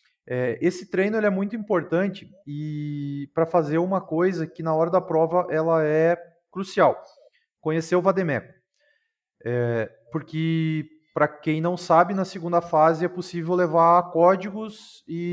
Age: 30-49